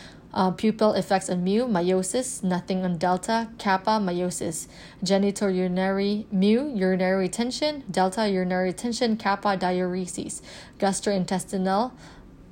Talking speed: 105 wpm